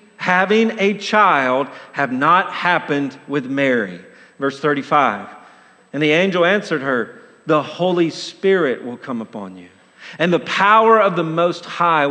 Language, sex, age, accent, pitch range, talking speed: English, male, 50-69, American, 145-205 Hz, 145 wpm